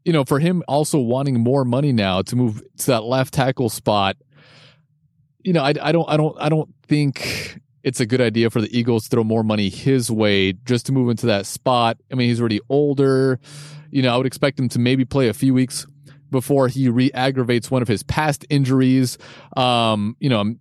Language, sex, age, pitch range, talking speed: English, male, 30-49, 115-140 Hz, 215 wpm